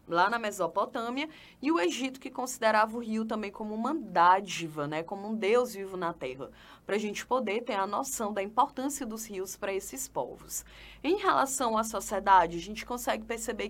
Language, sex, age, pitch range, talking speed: Portuguese, female, 20-39, 185-245 Hz, 190 wpm